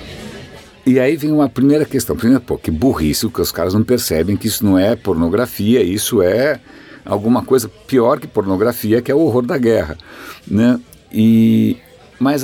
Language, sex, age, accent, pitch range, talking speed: Portuguese, male, 60-79, Brazilian, 95-125 Hz, 175 wpm